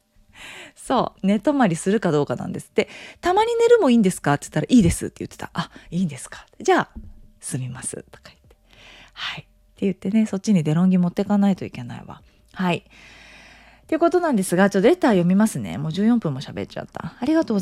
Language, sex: Japanese, female